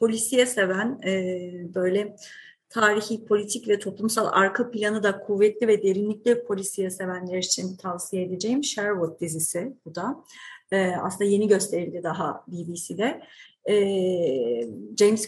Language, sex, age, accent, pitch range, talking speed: Turkish, female, 30-49, native, 185-230 Hz, 110 wpm